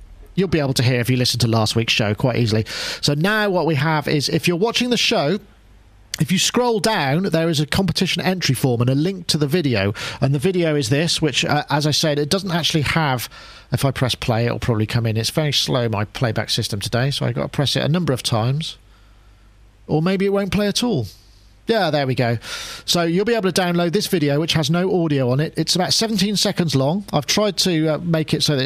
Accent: British